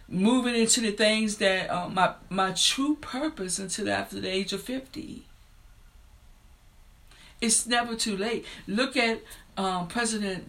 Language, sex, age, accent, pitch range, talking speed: English, female, 50-69, American, 190-235 Hz, 135 wpm